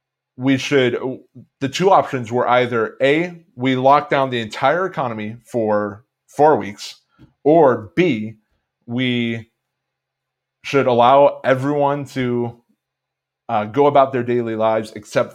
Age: 30-49